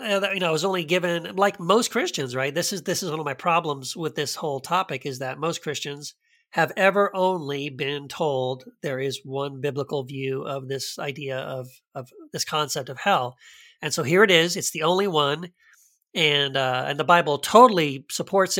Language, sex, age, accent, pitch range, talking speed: English, male, 40-59, American, 140-180 Hz, 200 wpm